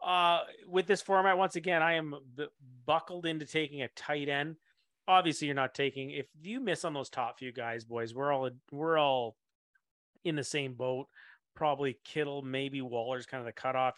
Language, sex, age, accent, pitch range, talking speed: English, male, 30-49, American, 130-165 Hz, 190 wpm